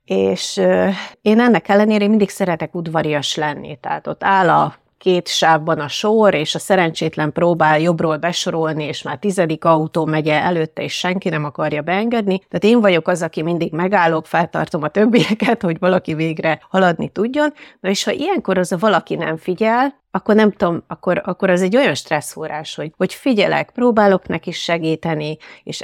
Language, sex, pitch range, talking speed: Hungarian, female, 160-205 Hz, 170 wpm